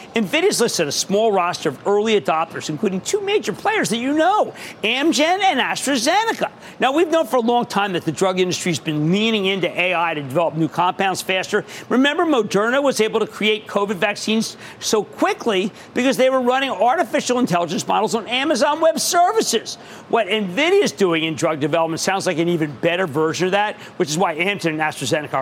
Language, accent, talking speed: English, American, 190 wpm